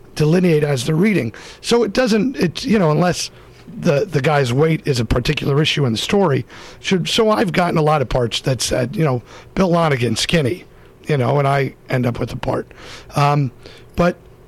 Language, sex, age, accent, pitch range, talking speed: English, male, 50-69, American, 130-190 Hz, 200 wpm